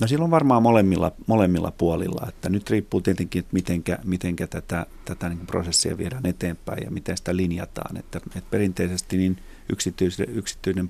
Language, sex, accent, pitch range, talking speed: Finnish, male, native, 85-95 Hz, 155 wpm